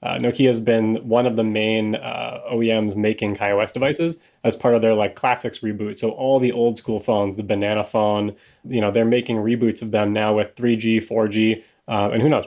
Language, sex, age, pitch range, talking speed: English, male, 20-39, 105-120 Hz, 210 wpm